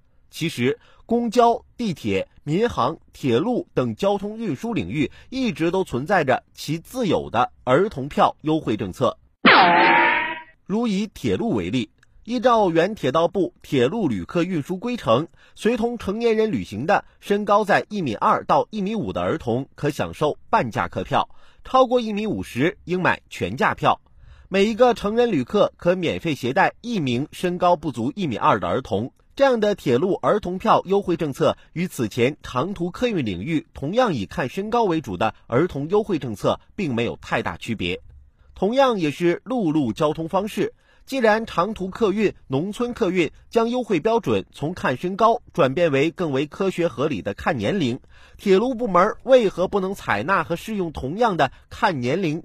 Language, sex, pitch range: Chinese, male, 155-230 Hz